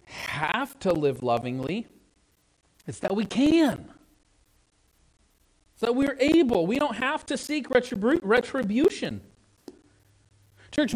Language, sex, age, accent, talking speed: English, male, 40-59, American, 105 wpm